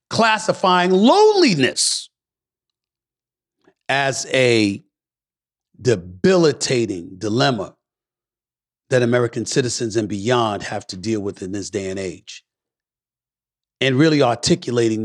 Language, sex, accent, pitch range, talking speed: English, male, American, 100-130 Hz, 90 wpm